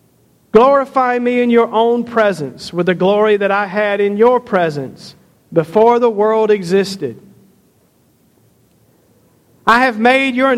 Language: English